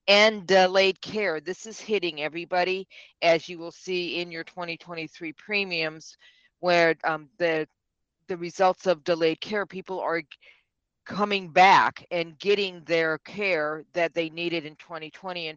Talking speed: 145 wpm